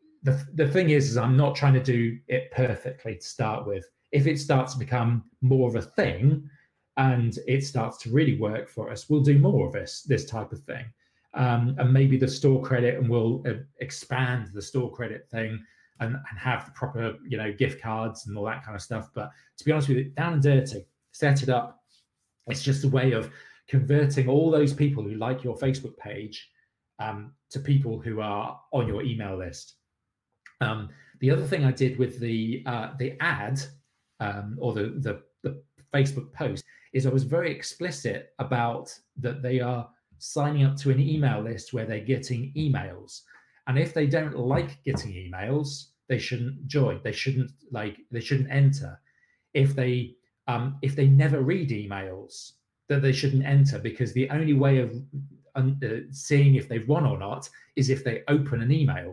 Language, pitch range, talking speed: English, 115-140 Hz, 190 wpm